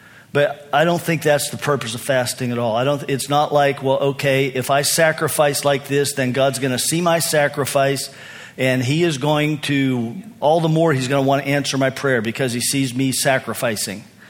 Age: 50-69